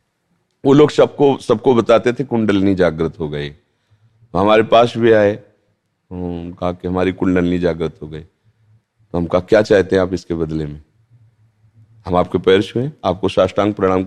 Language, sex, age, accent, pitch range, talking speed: Hindi, male, 40-59, native, 100-150 Hz, 165 wpm